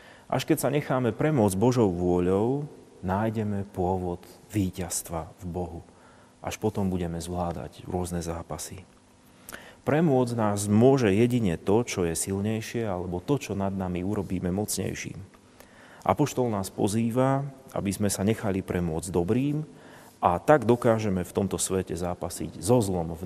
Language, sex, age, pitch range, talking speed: Slovak, male, 30-49, 90-110 Hz, 135 wpm